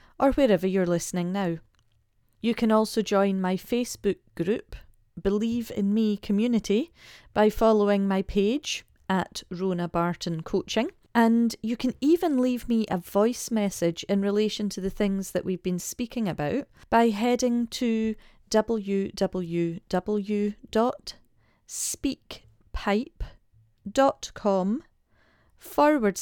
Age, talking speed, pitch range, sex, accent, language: 40-59, 110 wpm, 175-225 Hz, female, British, English